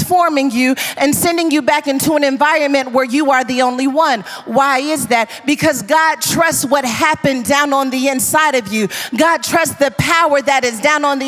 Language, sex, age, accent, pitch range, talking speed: English, female, 40-59, American, 280-350 Hz, 200 wpm